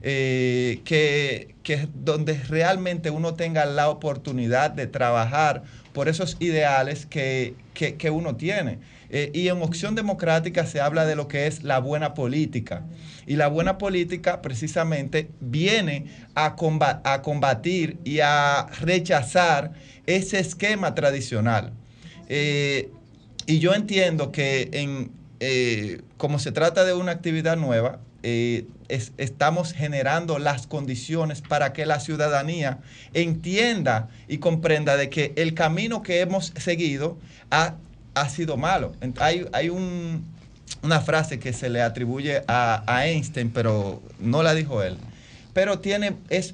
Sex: male